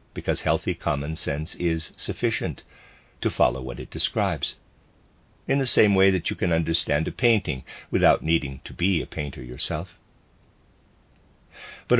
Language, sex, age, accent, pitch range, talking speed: English, male, 50-69, American, 75-100 Hz, 145 wpm